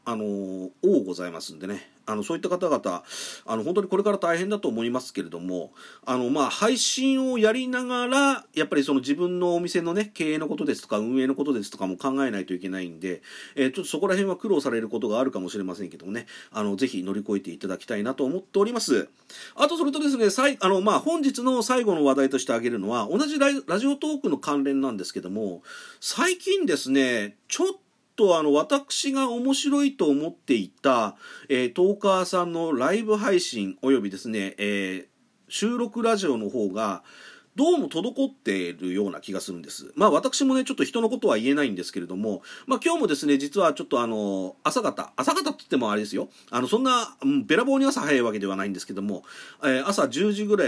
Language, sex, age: Japanese, male, 40-59